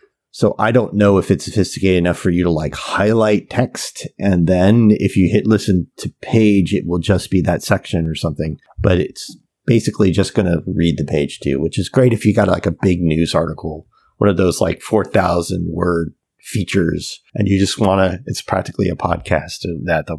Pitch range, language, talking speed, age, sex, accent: 85-105 Hz, English, 210 wpm, 30-49, male, American